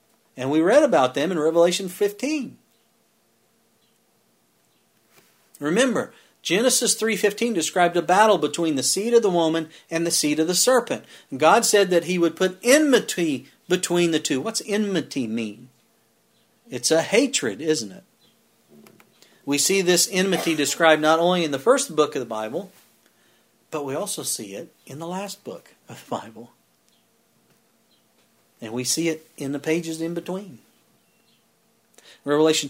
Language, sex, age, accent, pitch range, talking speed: English, male, 50-69, American, 155-210 Hz, 145 wpm